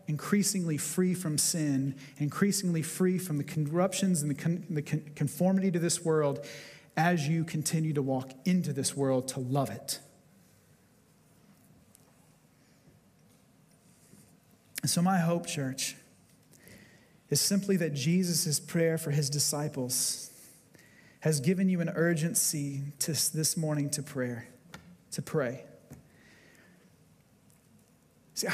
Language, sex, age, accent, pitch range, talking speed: English, male, 40-59, American, 155-185 Hz, 105 wpm